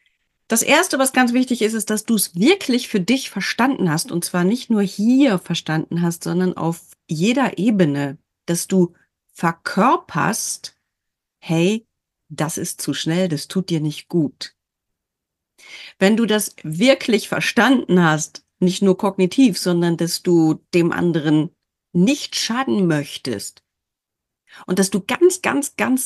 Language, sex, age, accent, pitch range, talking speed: German, female, 40-59, German, 170-225 Hz, 145 wpm